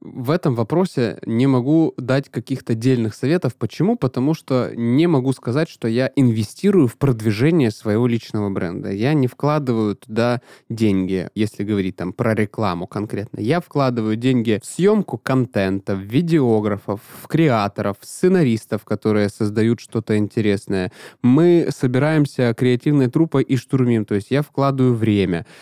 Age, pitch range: 20-39, 110-135 Hz